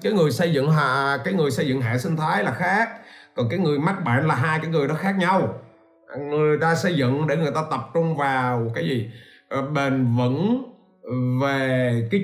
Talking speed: 205 wpm